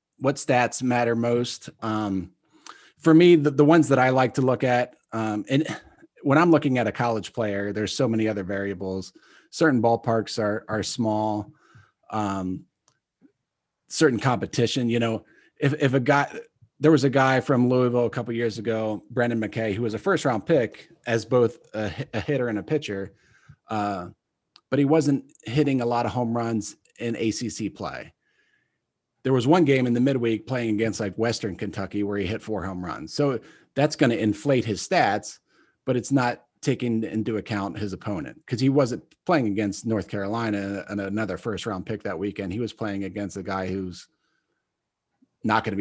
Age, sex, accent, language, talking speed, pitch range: 30-49, male, American, English, 185 wpm, 105-130 Hz